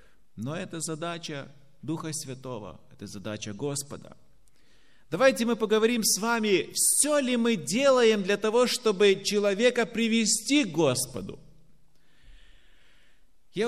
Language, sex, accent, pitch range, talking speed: Russian, male, native, 175-235 Hz, 110 wpm